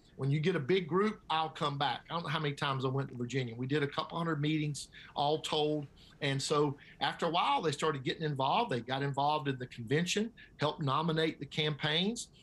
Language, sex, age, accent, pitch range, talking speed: English, male, 50-69, American, 140-180 Hz, 220 wpm